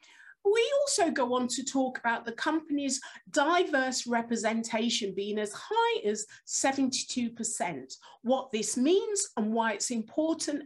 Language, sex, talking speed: English, female, 130 wpm